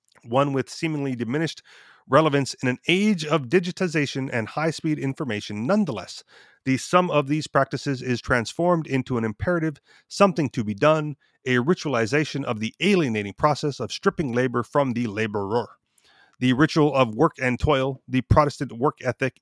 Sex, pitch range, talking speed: male, 120-150 Hz, 155 wpm